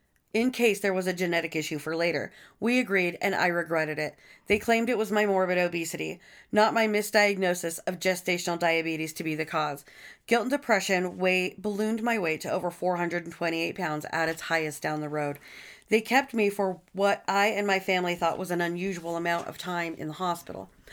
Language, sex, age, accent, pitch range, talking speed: English, female, 40-59, American, 170-210 Hz, 190 wpm